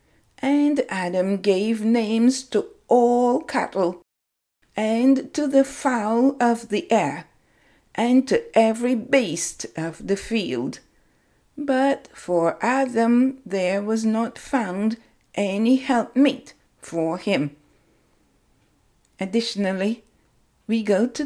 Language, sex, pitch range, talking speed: English, female, 205-270 Hz, 100 wpm